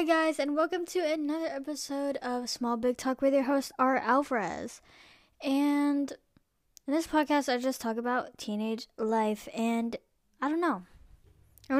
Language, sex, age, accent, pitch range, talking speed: English, female, 10-29, American, 210-270 Hz, 155 wpm